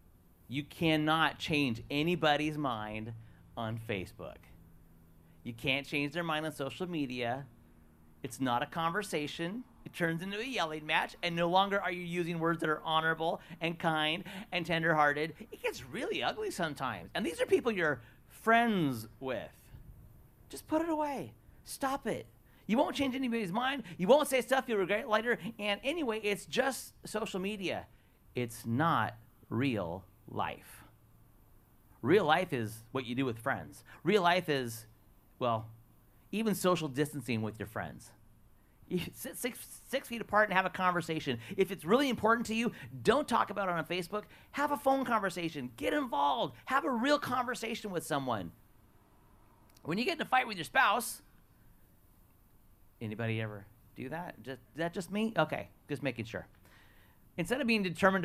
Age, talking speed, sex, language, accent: 40-59, 160 wpm, male, English, American